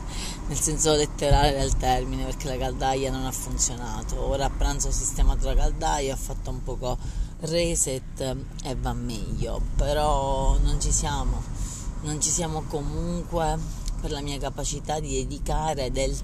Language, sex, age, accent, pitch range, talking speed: Italian, female, 30-49, native, 120-145 Hz, 150 wpm